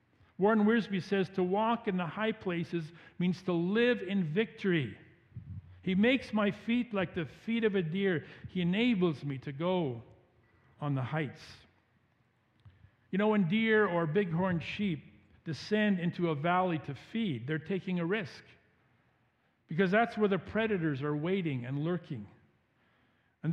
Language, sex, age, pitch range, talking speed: English, male, 50-69, 155-220 Hz, 150 wpm